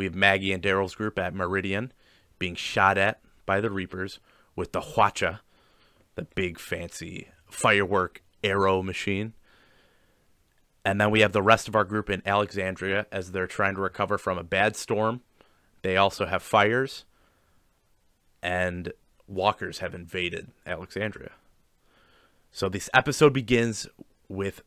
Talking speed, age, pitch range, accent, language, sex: 140 wpm, 30-49, 90-110 Hz, American, English, male